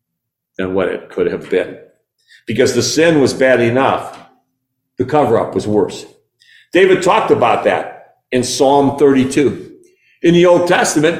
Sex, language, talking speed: male, English, 145 wpm